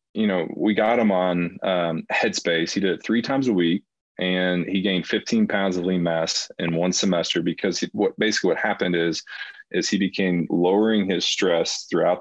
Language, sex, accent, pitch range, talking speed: English, male, American, 90-115 Hz, 195 wpm